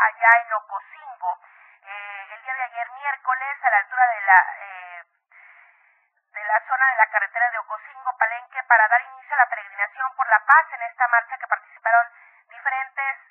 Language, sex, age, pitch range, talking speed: Spanish, female, 40-59, 220-280 Hz, 175 wpm